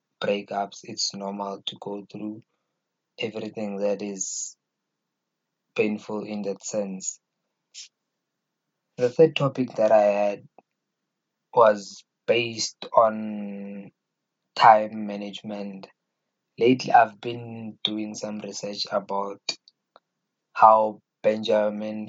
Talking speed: 90 wpm